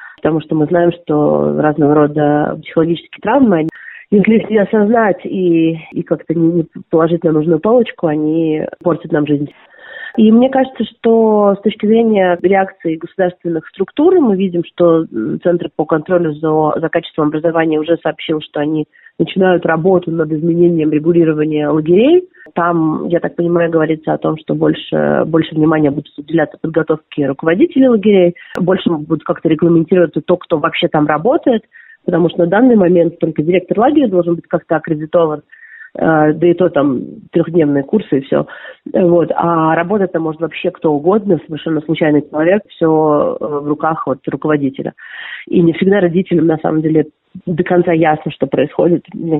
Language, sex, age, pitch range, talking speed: Russian, female, 30-49, 155-185 Hz, 150 wpm